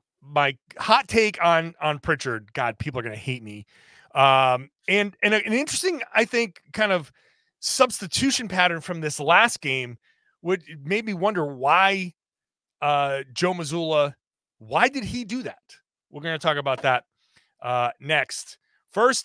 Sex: male